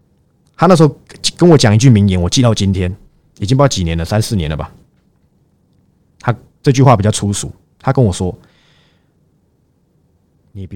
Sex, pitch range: male, 95-140 Hz